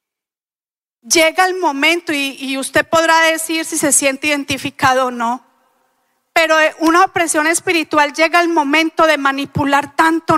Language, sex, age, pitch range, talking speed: English, female, 40-59, 275-335 Hz, 140 wpm